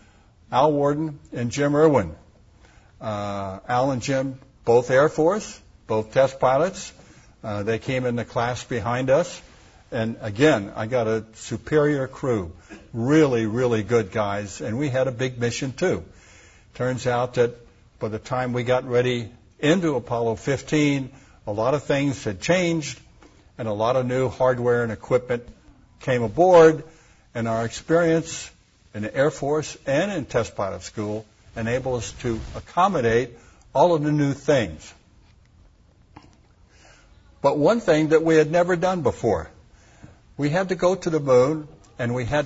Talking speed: 155 wpm